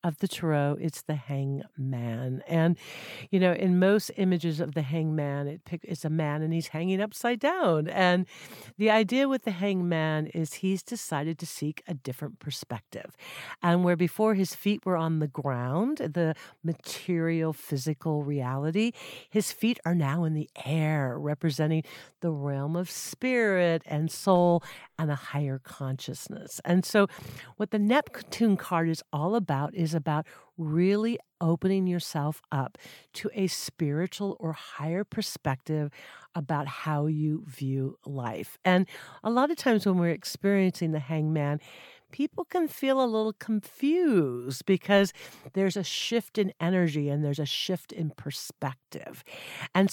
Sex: female